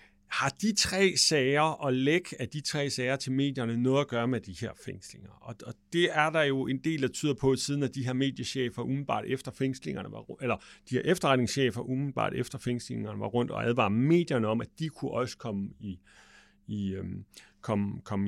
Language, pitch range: English, 115-155 Hz